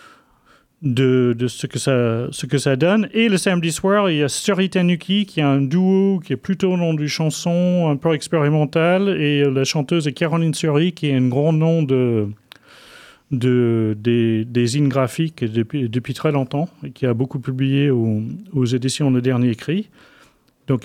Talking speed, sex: 185 wpm, male